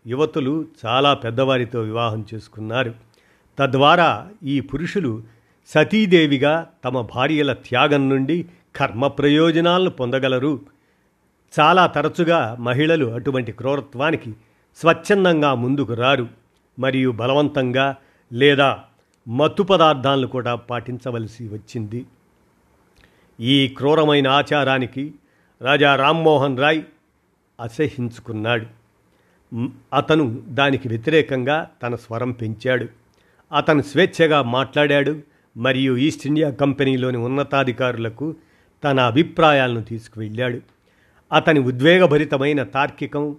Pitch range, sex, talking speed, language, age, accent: 120-150 Hz, male, 80 wpm, Telugu, 50-69, native